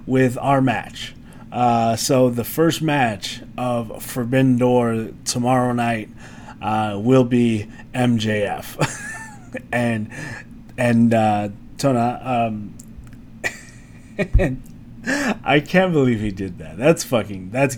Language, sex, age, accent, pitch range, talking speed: English, male, 30-49, American, 110-130 Hz, 105 wpm